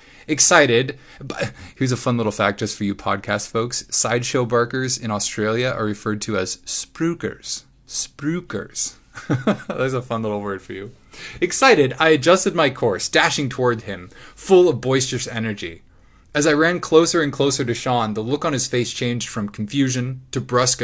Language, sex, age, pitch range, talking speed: English, male, 20-39, 115-155 Hz, 170 wpm